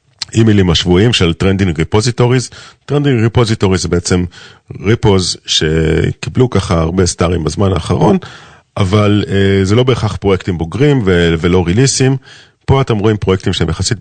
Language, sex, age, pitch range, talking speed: Hebrew, male, 40-59, 90-125 Hz, 130 wpm